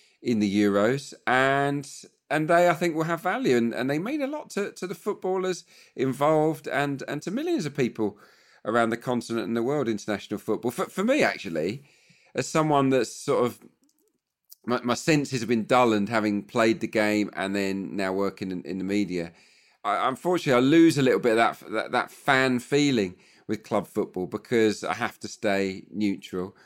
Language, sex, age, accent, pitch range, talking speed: English, male, 40-59, British, 105-140 Hz, 195 wpm